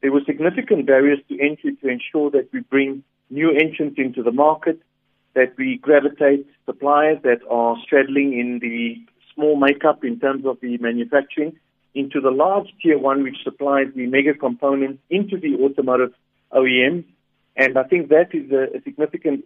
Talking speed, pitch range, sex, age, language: 165 wpm, 130-150 Hz, male, 50-69, English